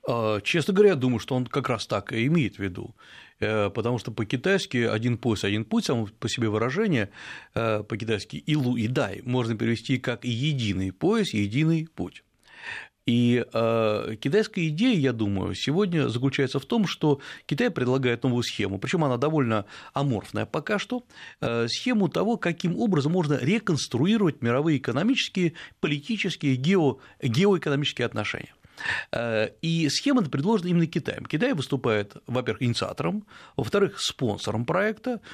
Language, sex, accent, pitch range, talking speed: Russian, male, native, 120-170 Hz, 135 wpm